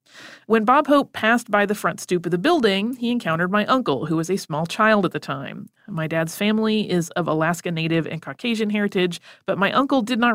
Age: 30-49